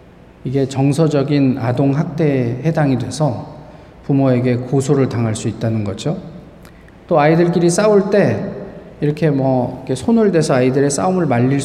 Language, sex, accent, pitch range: Korean, male, native, 125-155 Hz